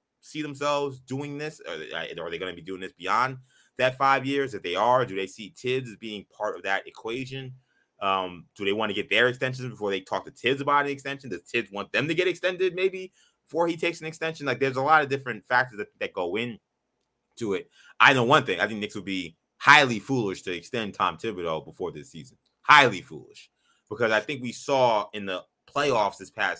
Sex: male